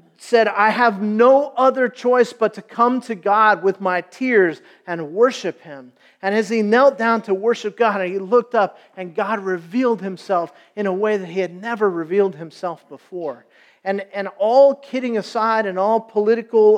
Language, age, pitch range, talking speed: English, 40-59, 180-225 Hz, 180 wpm